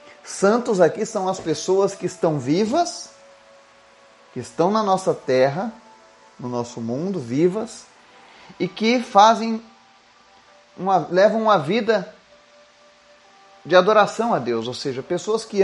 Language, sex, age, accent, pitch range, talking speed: Portuguese, male, 30-49, Brazilian, 155-220 Hz, 125 wpm